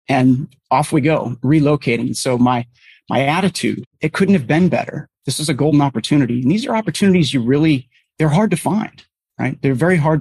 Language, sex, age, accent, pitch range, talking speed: English, male, 30-49, American, 125-155 Hz, 195 wpm